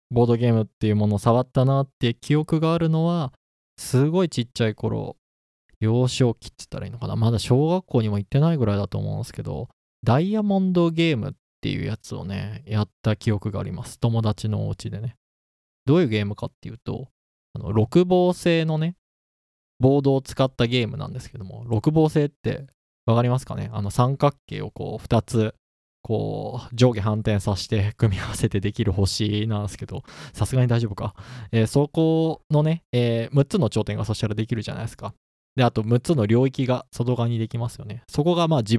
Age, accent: 20-39, native